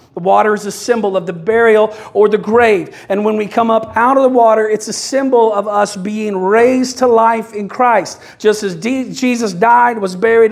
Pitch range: 205-235 Hz